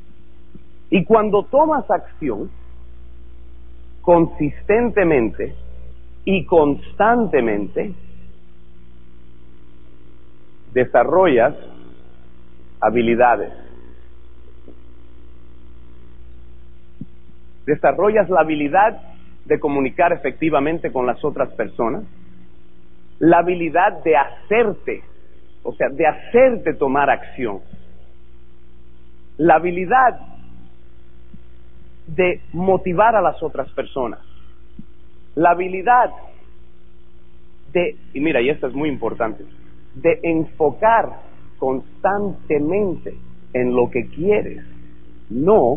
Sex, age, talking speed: male, 50-69, 70 wpm